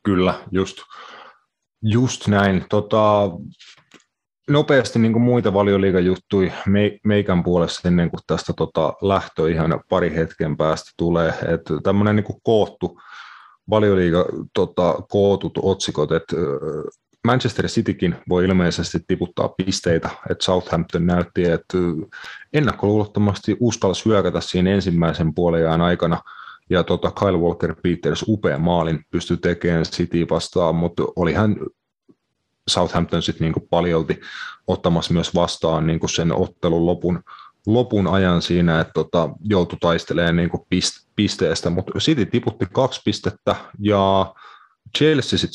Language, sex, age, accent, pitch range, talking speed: Finnish, male, 30-49, native, 85-105 Hz, 105 wpm